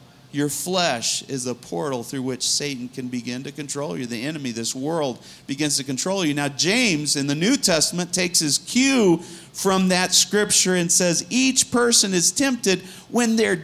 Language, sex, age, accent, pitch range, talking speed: English, male, 40-59, American, 135-185 Hz, 180 wpm